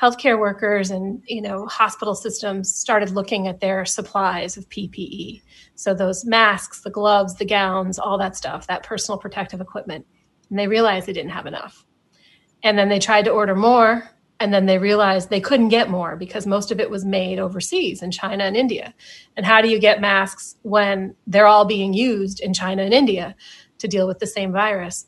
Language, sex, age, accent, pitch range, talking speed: English, female, 30-49, American, 195-220 Hz, 195 wpm